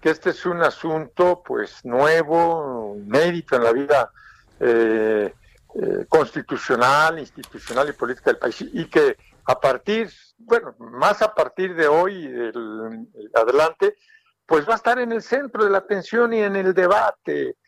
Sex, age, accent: male, 60-79, Mexican